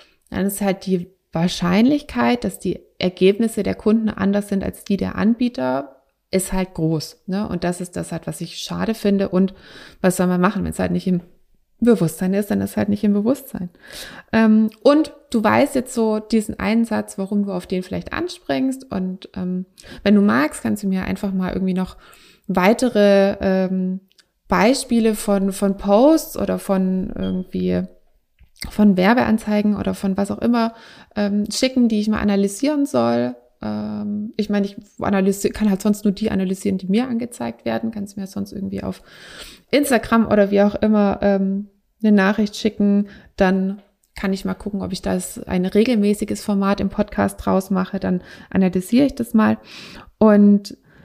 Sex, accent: female, German